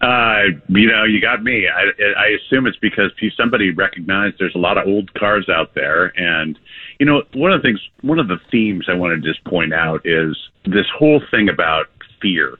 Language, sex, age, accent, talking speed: English, male, 50-69, American, 210 wpm